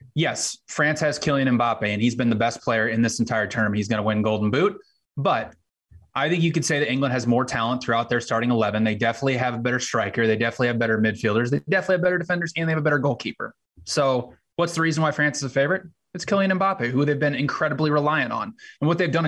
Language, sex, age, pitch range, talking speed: English, male, 20-39, 115-140 Hz, 250 wpm